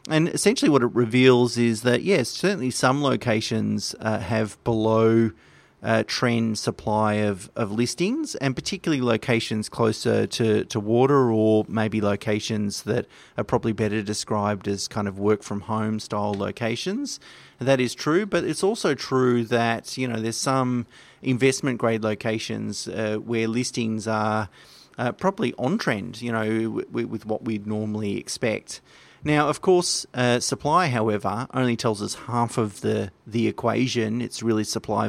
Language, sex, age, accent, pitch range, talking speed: English, male, 30-49, Australian, 110-125 Hz, 155 wpm